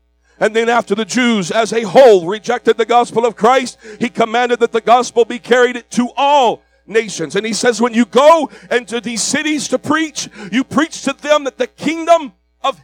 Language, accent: English, American